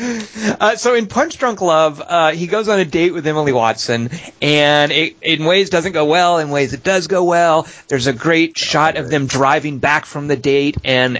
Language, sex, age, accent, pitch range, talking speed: English, male, 40-59, American, 135-175 Hz, 215 wpm